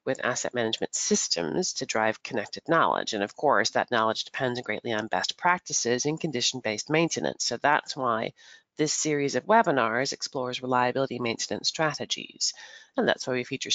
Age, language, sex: 40-59, English, female